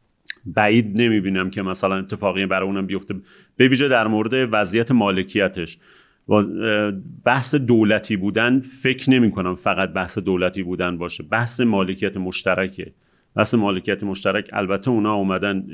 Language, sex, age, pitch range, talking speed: Persian, male, 40-59, 100-130 Hz, 125 wpm